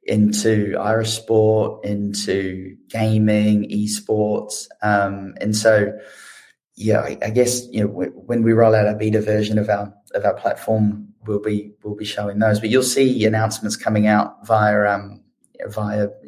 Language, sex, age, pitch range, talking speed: English, male, 20-39, 105-115 Hz, 160 wpm